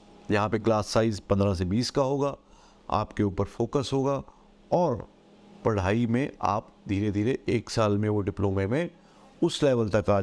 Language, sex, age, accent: Hindi, male, 50-69, native